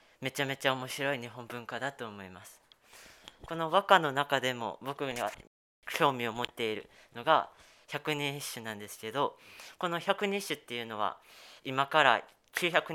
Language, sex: Japanese, female